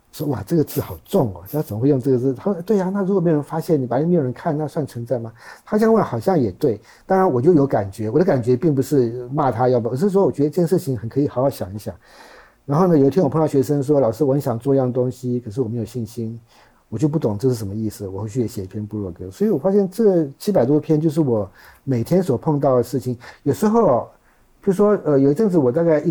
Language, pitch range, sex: Chinese, 115-160 Hz, male